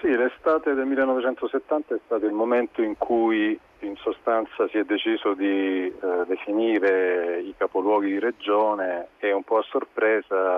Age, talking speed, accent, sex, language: 40-59, 155 wpm, native, male, Italian